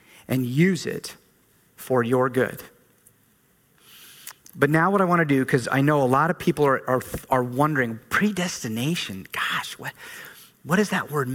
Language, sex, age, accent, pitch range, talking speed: English, male, 40-59, American, 140-195 Hz, 165 wpm